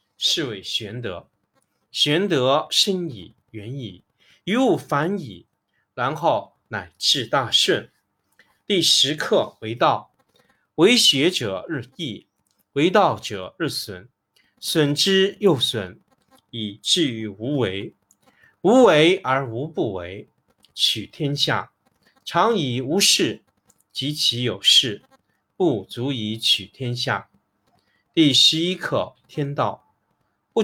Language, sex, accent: Chinese, male, native